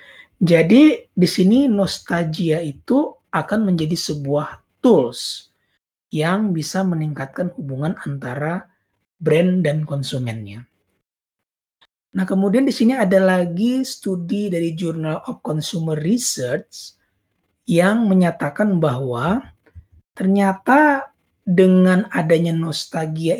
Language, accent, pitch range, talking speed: Indonesian, native, 150-210 Hz, 90 wpm